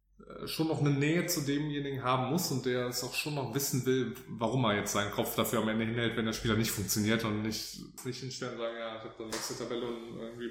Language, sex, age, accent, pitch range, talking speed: German, male, 20-39, German, 110-130 Hz, 250 wpm